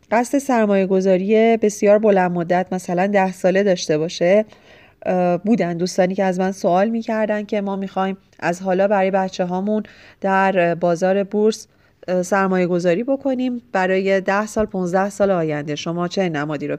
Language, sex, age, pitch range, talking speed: Persian, female, 30-49, 185-220 Hz, 145 wpm